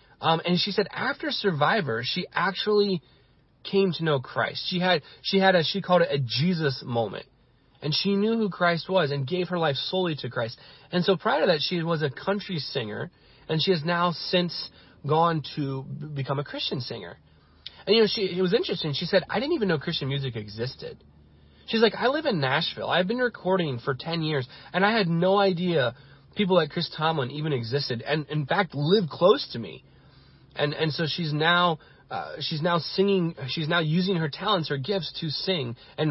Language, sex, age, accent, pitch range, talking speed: English, male, 30-49, American, 140-185 Hz, 205 wpm